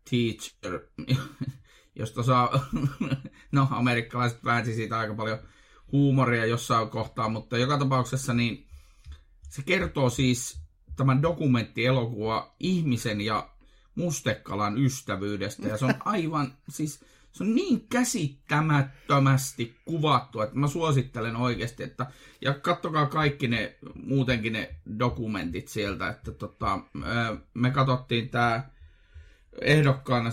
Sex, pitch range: male, 110-135 Hz